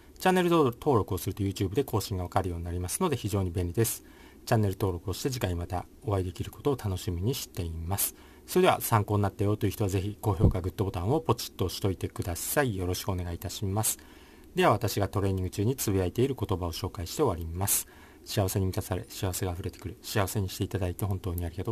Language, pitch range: Japanese, 90-110 Hz